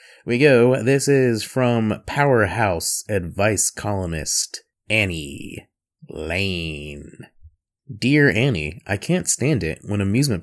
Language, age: English, 20-39